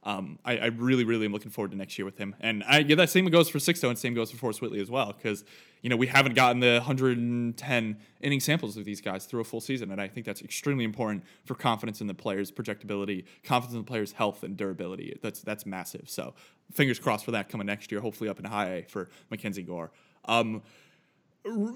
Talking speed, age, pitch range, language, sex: 235 wpm, 20-39, 110-140 Hz, English, male